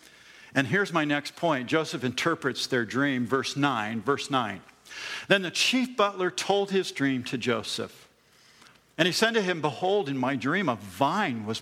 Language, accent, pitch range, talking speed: English, American, 135-190 Hz, 175 wpm